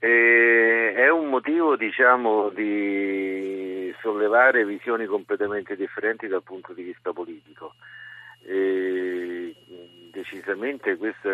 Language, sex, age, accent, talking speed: Italian, male, 50-69, native, 95 wpm